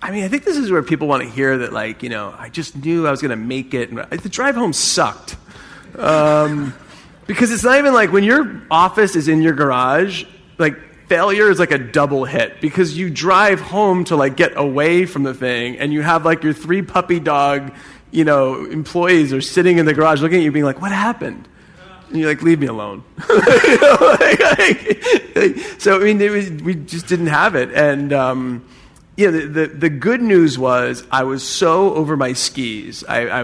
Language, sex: English, male